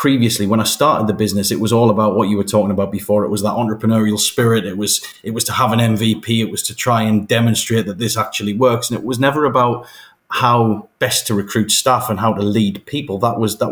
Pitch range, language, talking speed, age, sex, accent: 105-125 Hz, English, 250 wpm, 30-49, male, British